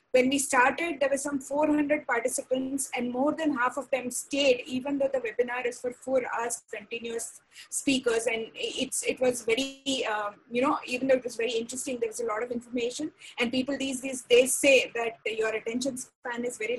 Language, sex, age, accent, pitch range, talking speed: English, female, 20-39, Indian, 240-290 Hz, 205 wpm